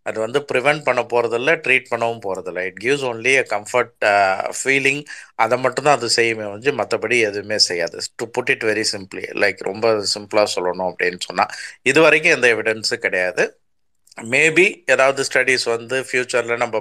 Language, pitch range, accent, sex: Tamil, 110-145 Hz, native, male